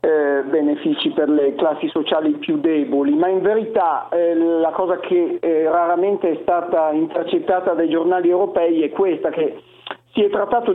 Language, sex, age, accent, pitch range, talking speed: Italian, male, 50-69, native, 170-225 Hz, 160 wpm